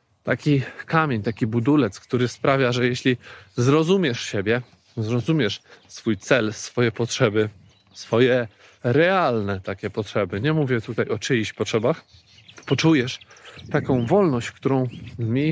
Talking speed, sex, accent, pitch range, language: 115 wpm, male, native, 120-160 Hz, Polish